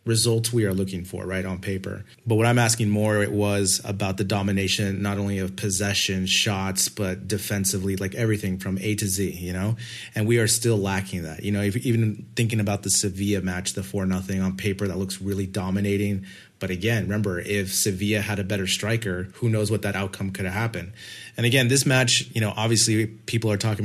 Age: 30-49